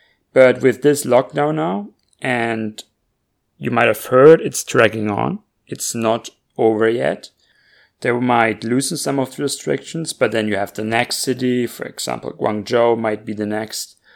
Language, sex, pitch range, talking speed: English, male, 110-130 Hz, 160 wpm